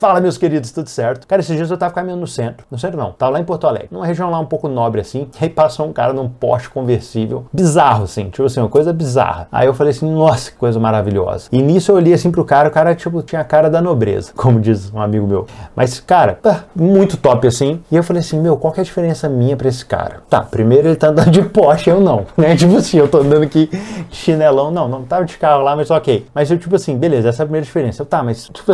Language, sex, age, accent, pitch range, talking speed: Portuguese, male, 30-49, Brazilian, 120-170 Hz, 270 wpm